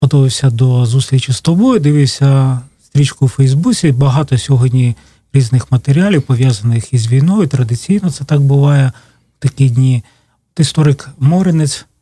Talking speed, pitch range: 125 wpm, 125-145 Hz